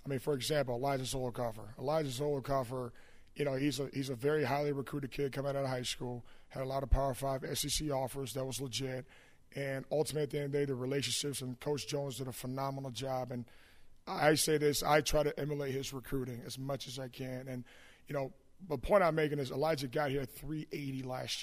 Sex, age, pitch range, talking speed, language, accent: male, 30-49, 130-150 Hz, 225 wpm, English, American